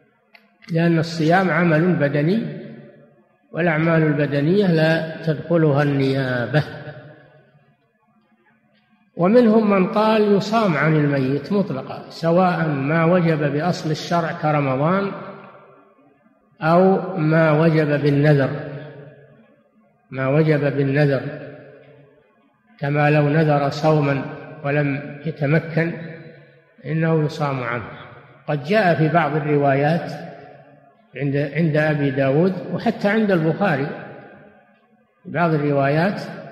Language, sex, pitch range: Arabic, male, 145-175 Hz